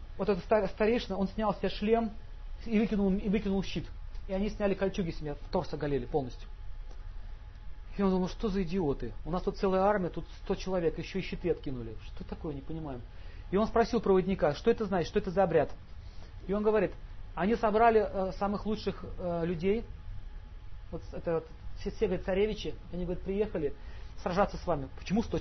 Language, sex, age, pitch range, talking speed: Russian, male, 40-59, 135-195 Hz, 180 wpm